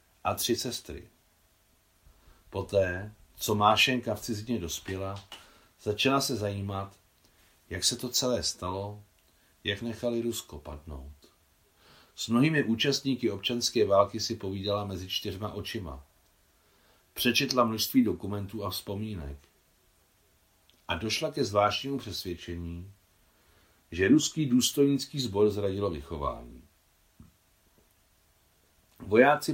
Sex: male